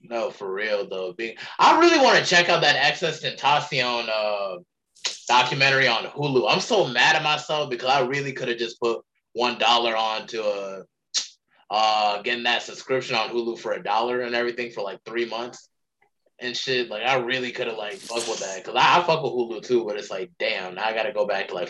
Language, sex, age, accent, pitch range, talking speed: English, male, 20-39, American, 115-175 Hz, 220 wpm